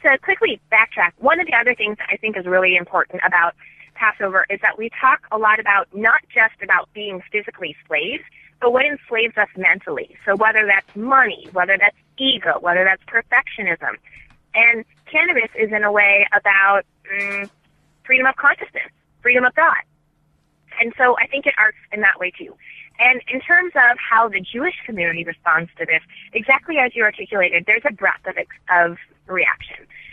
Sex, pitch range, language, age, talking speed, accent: female, 190-260 Hz, English, 20-39, 175 wpm, American